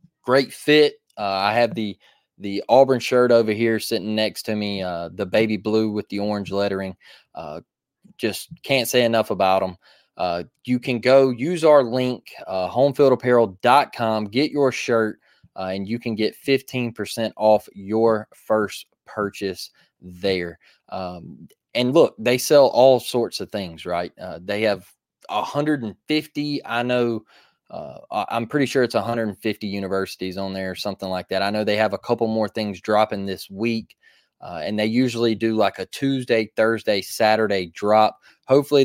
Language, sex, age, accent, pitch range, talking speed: English, male, 20-39, American, 105-125 Hz, 160 wpm